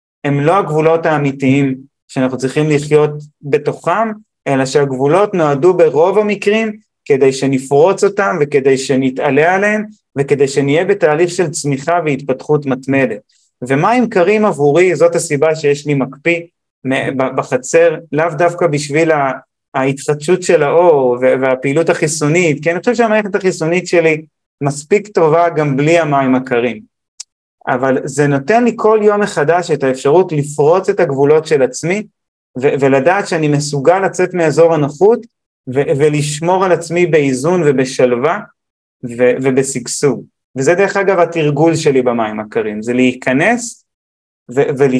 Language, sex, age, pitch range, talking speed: Hebrew, male, 30-49, 135-175 Hz, 125 wpm